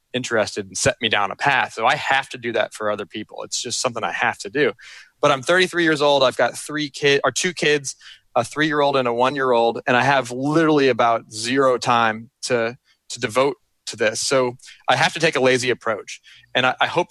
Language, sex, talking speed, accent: English, male, 225 wpm, American